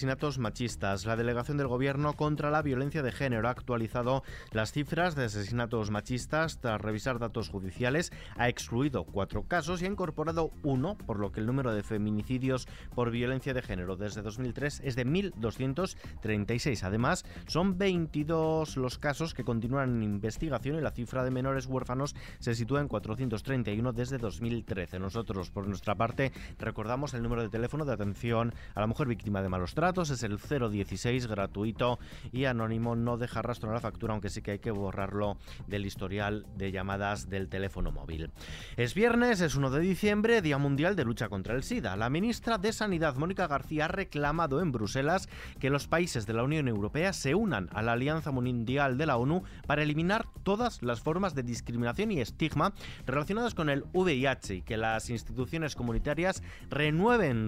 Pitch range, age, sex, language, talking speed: 110-150 Hz, 30-49, male, Spanish, 175 wpm